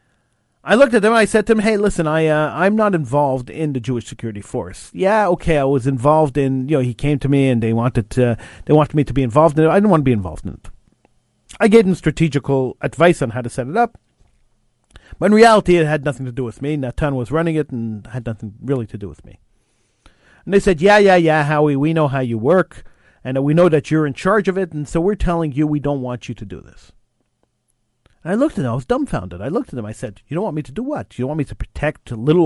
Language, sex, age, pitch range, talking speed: English, male, 40-59, 120-165 Hz, 270 wpm